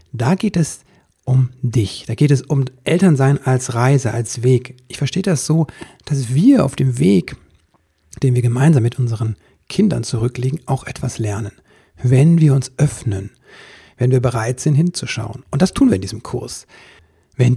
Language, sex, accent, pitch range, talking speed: German, male, German, 120-145 Hz, 170 wpm